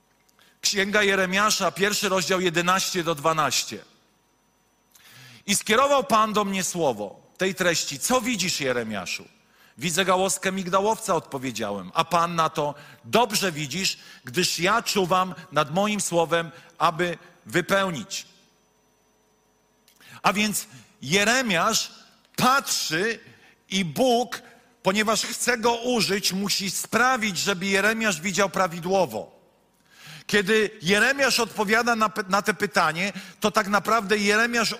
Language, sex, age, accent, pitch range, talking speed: Polish, male, 40-59, native, 180-225 Hz, 110 wpm